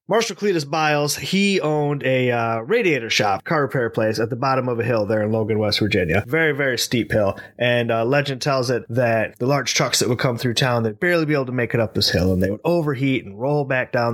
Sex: male